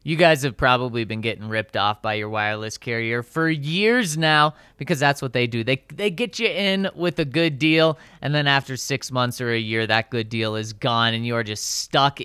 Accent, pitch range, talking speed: American, 120-160 Hz, 230 wpm